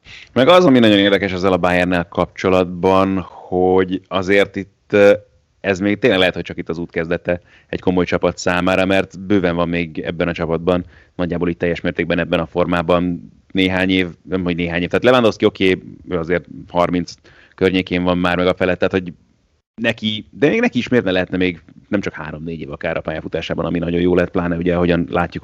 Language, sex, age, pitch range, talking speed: Hungarian, male, 30-49, 85-95 Hz, 200 wpm